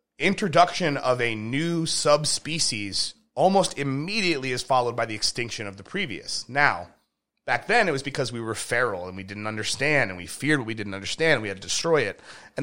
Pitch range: 125-185 Hz